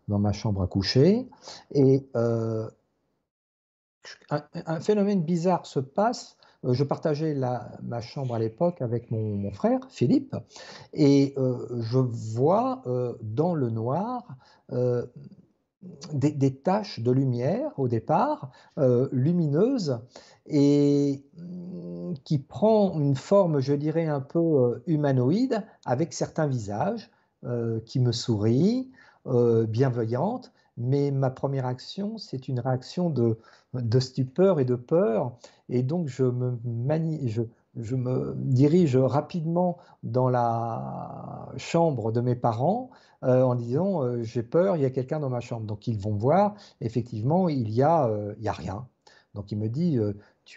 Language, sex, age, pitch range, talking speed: French, male, 50-69, 120-170 Hz, 140 wpm